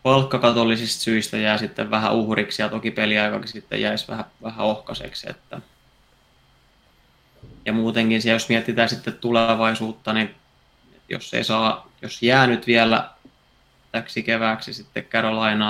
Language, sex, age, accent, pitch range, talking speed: Finnish, male, 20-39, native, 105-115 Hz, 120 wpm